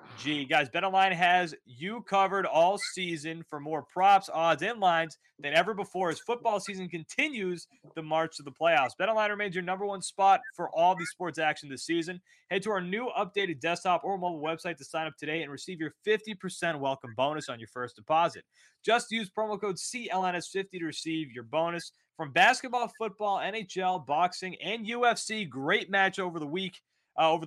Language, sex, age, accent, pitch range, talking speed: English, male, 30-49, American, 145-195 Hz, 185 wpm